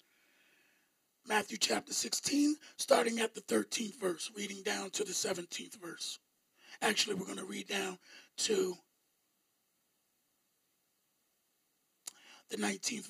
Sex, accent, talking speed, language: male, American, 105 wpm, English